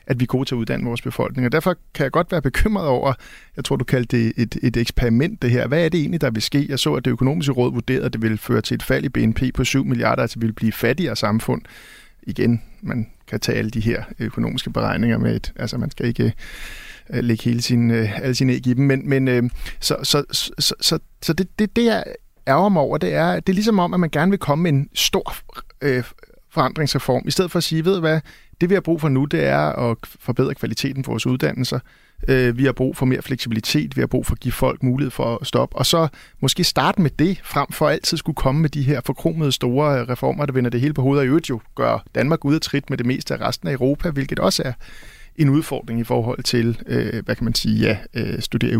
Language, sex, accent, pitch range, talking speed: English, male, Danish, 120-150 Hz, 245 wpm